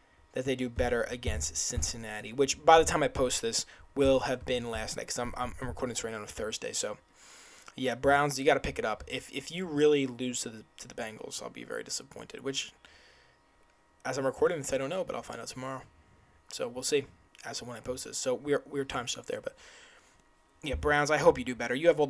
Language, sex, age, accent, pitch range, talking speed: English, male, 20-39, American, 115-145 Hz, 240 wpm